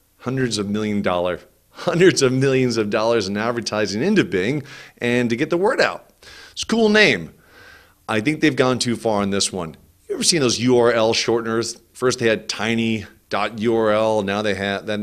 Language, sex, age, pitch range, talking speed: English, male, 40-59, 100-125 Hz, 185 wpm